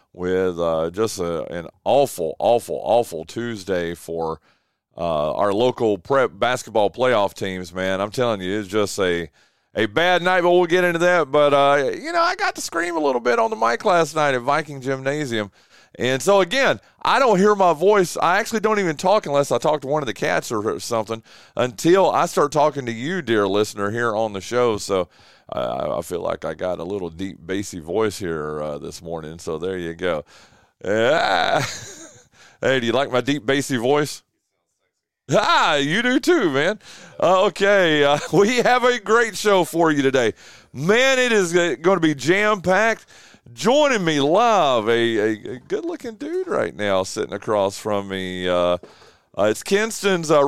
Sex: male